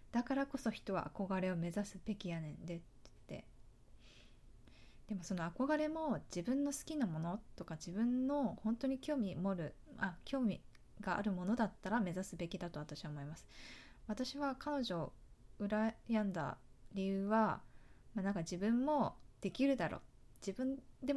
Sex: female